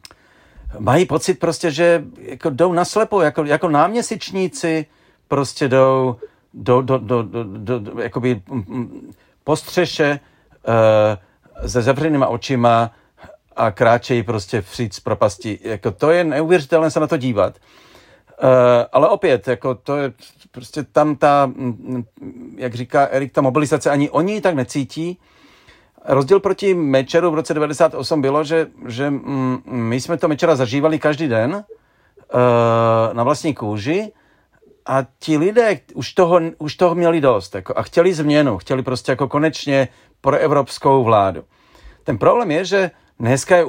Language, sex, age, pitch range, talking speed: Czech, male, 40-59, 125-160 Hz, 135 wpm